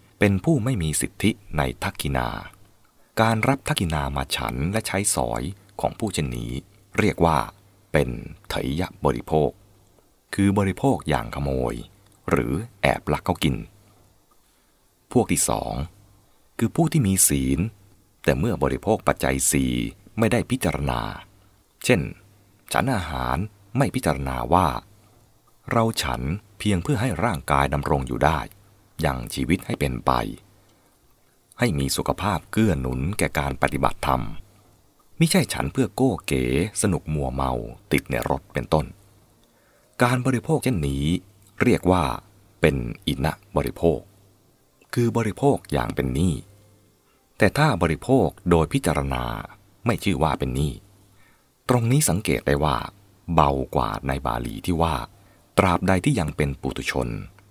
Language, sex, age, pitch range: English, male, 30-49, 70-105 Hz